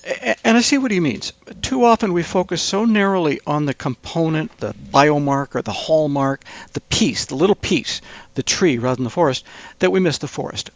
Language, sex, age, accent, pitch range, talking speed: English, male, 60-79, American, 125-180 Hz, 200 wpm